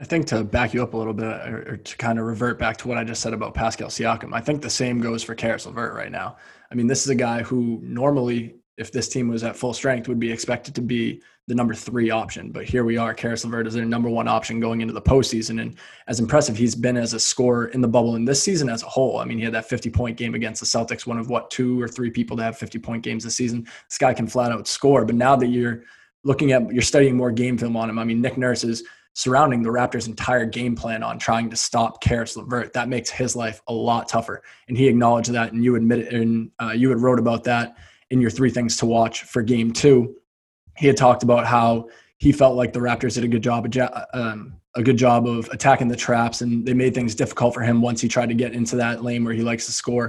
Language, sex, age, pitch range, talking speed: English, male, 20-39, 115-125 Hz, 265 wpm